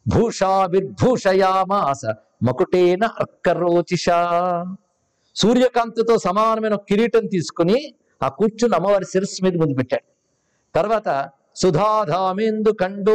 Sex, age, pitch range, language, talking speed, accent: male, 50-69, 175-230 Hz, Telugu, 65 wpm, native